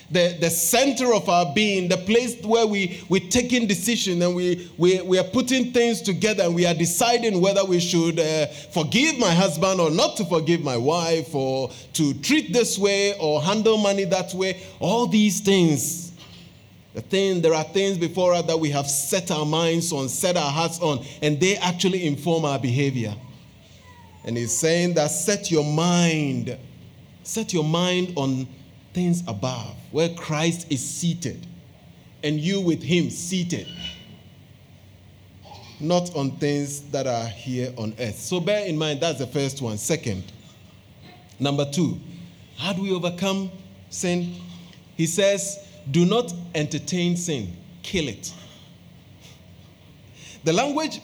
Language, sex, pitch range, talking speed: English, male, 145-190 Hz, 155 wpm